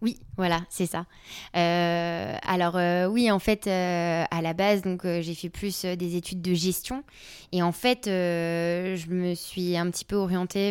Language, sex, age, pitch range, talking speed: French, female, 20-39, 180-210 Hz, 190 wpm